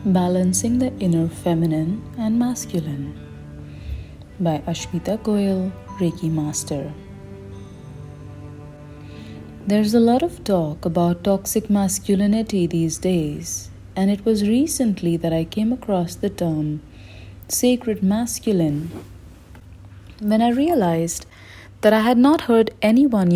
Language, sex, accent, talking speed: English, female, Indian, 110 wpm